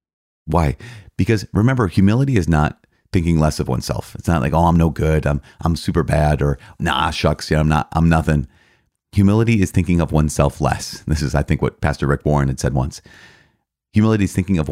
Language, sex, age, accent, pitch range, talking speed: English, male, 30-49, American, 75-100 Hz, 205 wpm